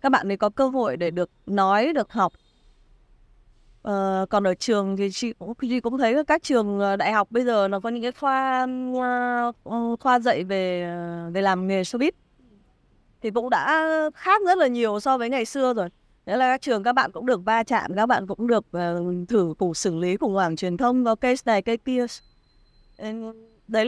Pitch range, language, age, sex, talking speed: 195-255 Hz, Vietnamese, 20-39, female, 195 wpm